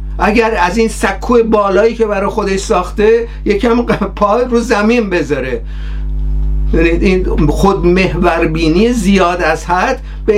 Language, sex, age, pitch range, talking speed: Persian, male, 50-69, 160-210 Hz, 120 wpm